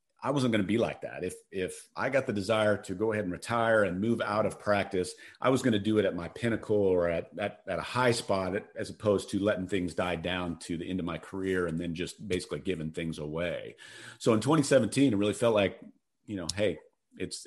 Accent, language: American, English